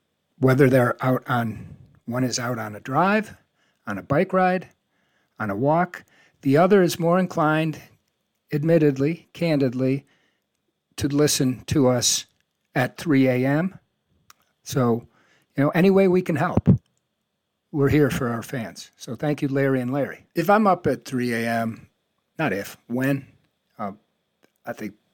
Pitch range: 110-145 Hz